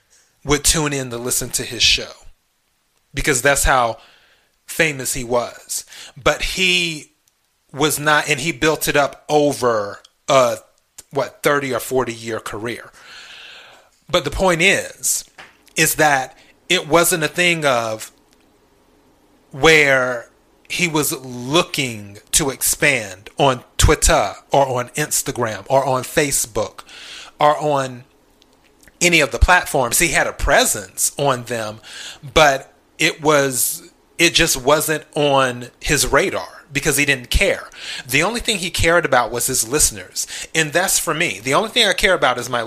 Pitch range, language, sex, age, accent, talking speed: 125-155 Hz, English, male, 30-49, American, 145 wpm